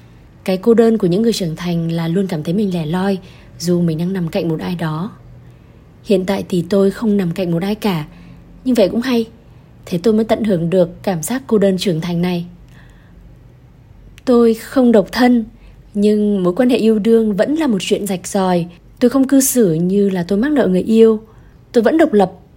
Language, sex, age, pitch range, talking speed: Vietnamese, female, 20-39, 175-225 Hz, 215 wpm